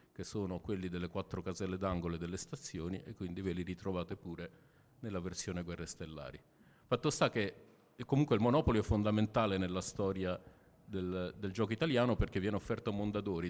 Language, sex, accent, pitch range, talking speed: Italian, male, native, 90-110 Hz, 170 wpm